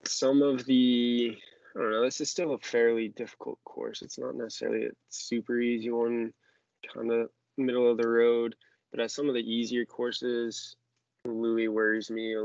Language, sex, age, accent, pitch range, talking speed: English, male, 20-39, American, 110-125 Hz, 180 wpm